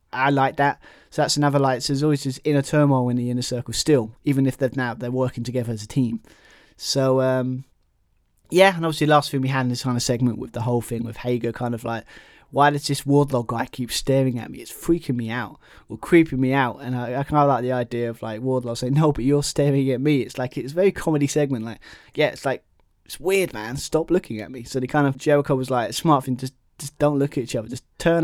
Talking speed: 260 wpm